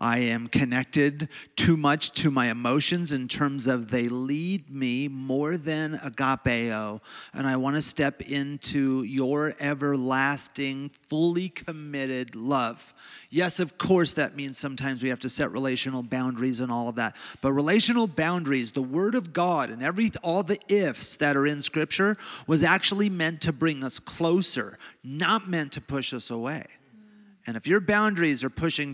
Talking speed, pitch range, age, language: 160 wpm, 130-185 Hz, 40-59, English